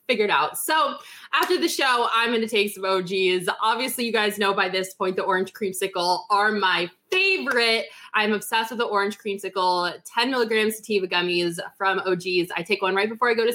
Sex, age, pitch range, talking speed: female, 20-39, 195-255 Hz, 200 wpm